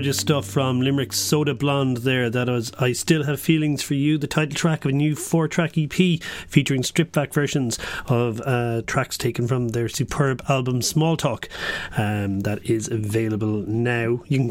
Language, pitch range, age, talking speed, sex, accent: English, 120-150 Hz, 40-59, 185 wpm, male, Irish